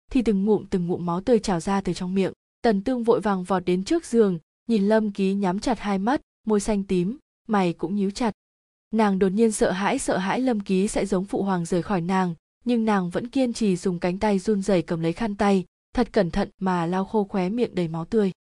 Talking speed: 245 wpm